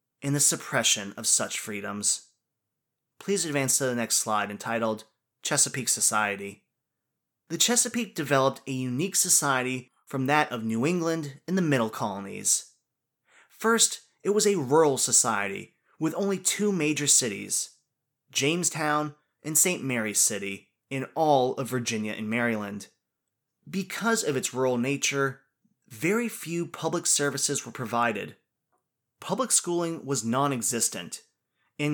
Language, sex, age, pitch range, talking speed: English, male, 20-39, 125-165 Hz, 130 wpm